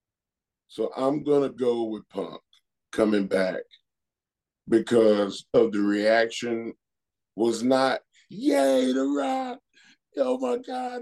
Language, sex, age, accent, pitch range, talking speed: English, male, 30-49, American, 115-175 Hz, 110 wpm